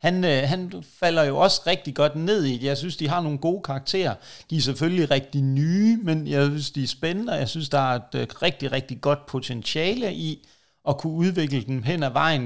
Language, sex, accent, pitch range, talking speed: Danish, male, native, 130-160 Hz, 220 wpm